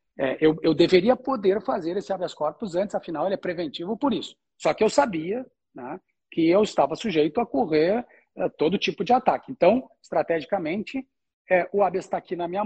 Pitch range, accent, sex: 170-225 Hz, Brazilian, male